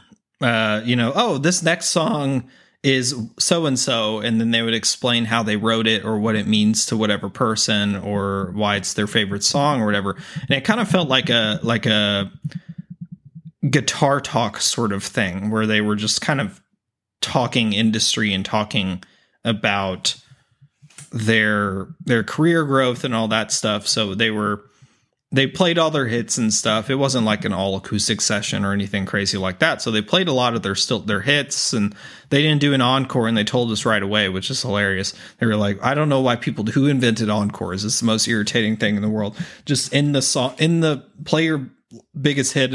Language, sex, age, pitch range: English, male, 30-49, 110-150 Hz